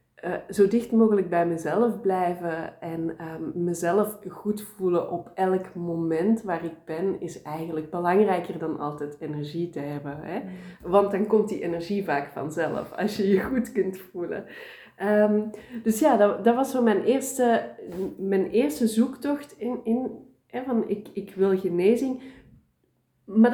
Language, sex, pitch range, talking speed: Dutch, female, 175-220 Hz, 155 wpm